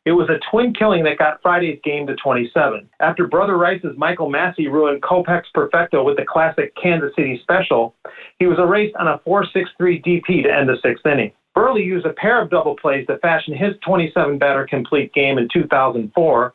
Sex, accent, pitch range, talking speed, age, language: male, American, 150-190 Hz, 190 wpm, 40-59, English